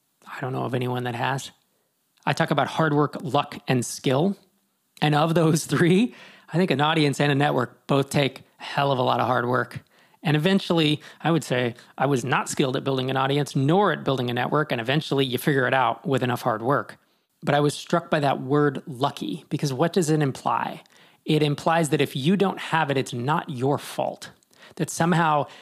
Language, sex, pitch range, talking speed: English, male, 135-160 Hz, 215 wpm